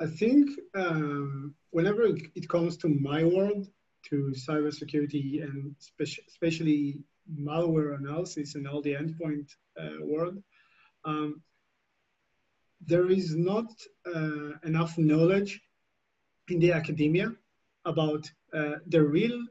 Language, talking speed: English, 110 wpm